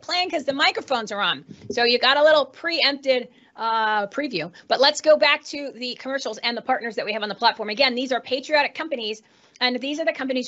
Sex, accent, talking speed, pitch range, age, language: female, American, 225 wpm, 240-305 Hz, 30-49, English